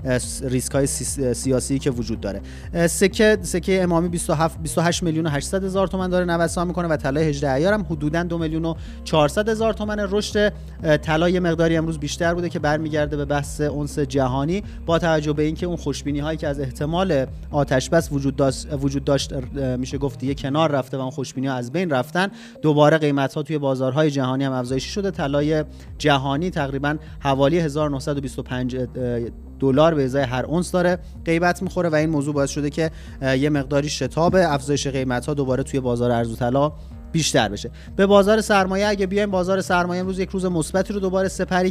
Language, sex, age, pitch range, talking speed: Persian, male, 30-49, 135-170 Hz, 175 wpm